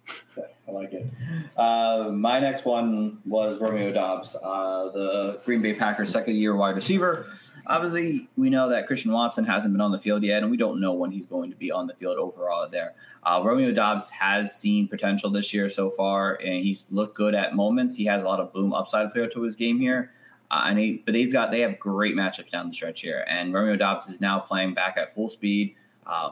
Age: 20-39